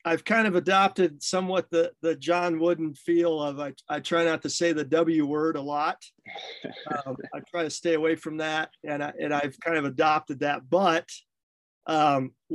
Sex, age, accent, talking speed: male, 40-59, American, 190 wpm